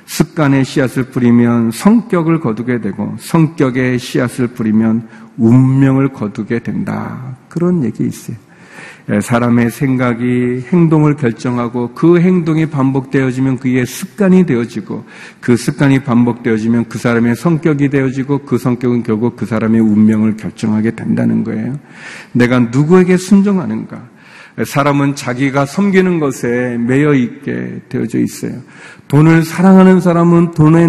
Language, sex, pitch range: Korean, male, 120-145 Hz